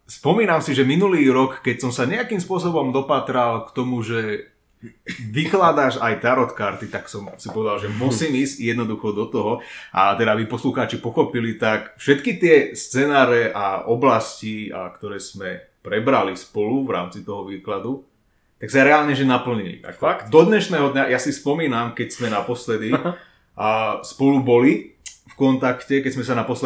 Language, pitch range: Slovak, 115-140 Hz